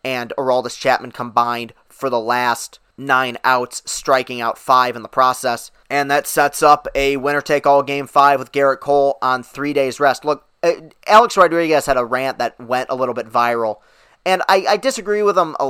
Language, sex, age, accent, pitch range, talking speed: English, male, 20-39, American, 130-190 Hz, 195 wpm